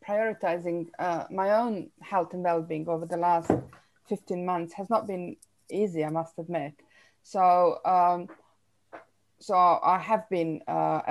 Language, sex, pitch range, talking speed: English, female, 160-180 Hz, 140 wpm